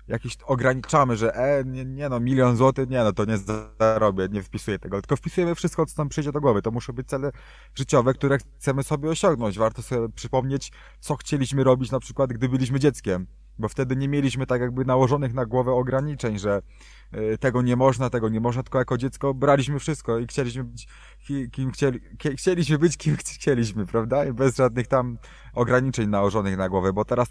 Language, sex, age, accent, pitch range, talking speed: Polish, male, 20-39, native, 110-135 Hz, 190 wpm